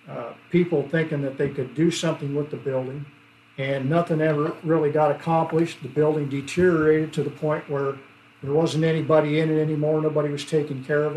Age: 50-69